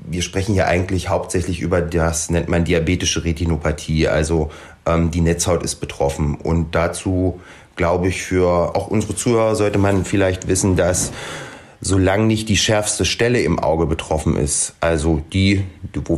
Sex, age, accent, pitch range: male, 30-49, German, 85-110 Hz